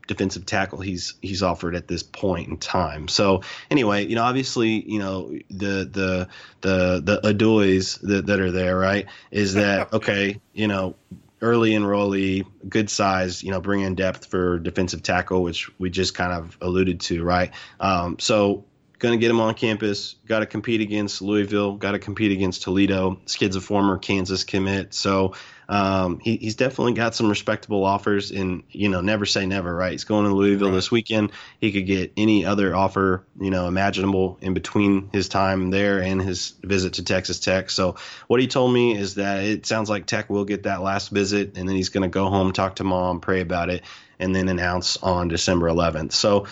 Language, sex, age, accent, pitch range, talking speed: English, male, 30-49, American, 95-105 Hz, 195 wpm